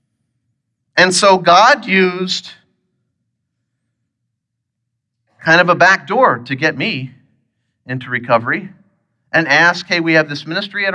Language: English